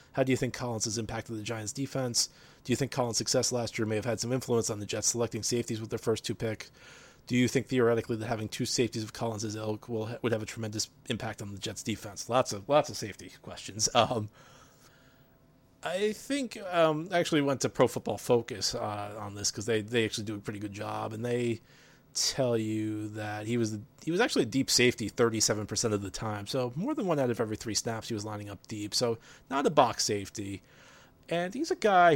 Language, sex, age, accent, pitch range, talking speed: English, male, 30-49, American, 110-145 Hz, 230 wpm